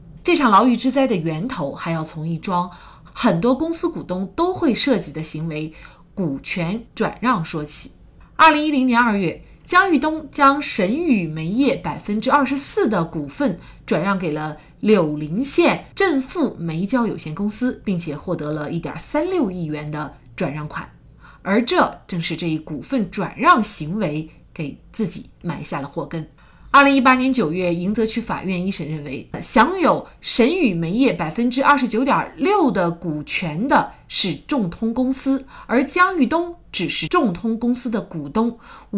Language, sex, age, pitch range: Chinese, female, 30-49, 170-270 Hz